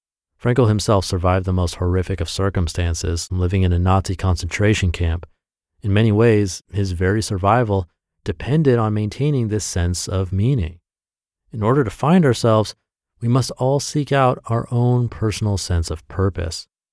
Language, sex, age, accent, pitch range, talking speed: English, male, 30-49, American, 90-125 Hz, 150 wpm